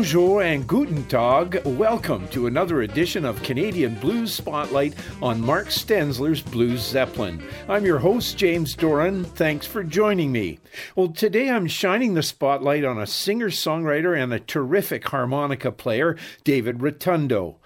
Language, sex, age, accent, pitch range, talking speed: English, male, 50-69, American, 130-175 Hz, 145 wpm